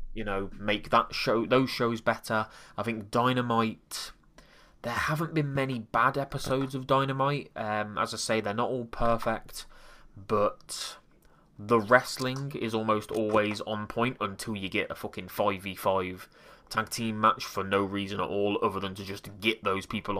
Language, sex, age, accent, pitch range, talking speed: English, male, 20-39, British, 105-120 Hz, 170 wpm